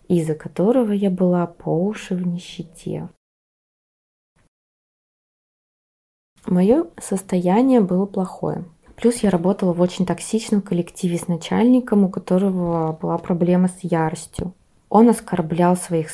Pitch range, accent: 165-195 Hz, native